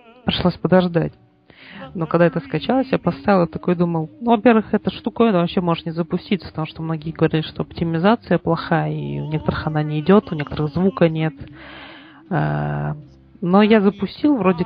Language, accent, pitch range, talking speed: Russian, native, 155-185 Hz, 165 wpm